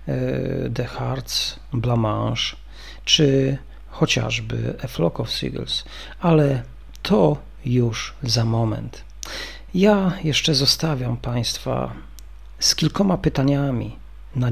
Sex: male